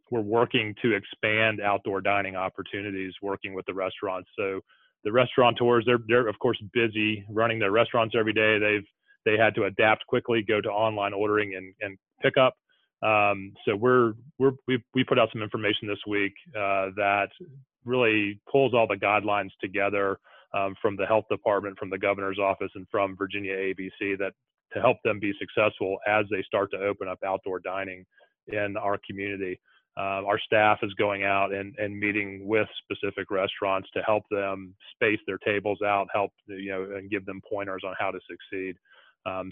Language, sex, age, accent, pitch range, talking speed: English, male, 30-49, American, 95-110 Hz, 180 wpm